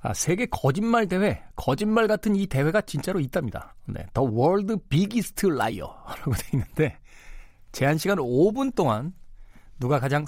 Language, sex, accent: Korean, male, native